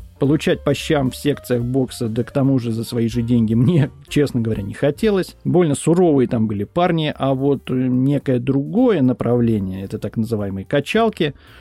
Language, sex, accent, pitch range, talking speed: Russian, male, native, 115-155 Hz, 170 wpm